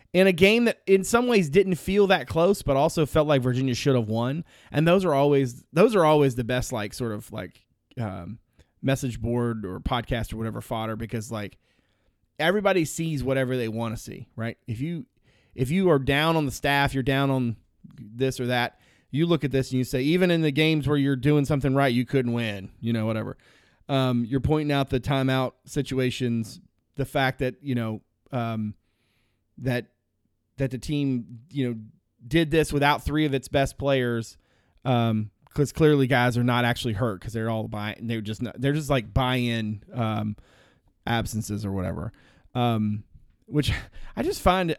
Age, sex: 30-49, male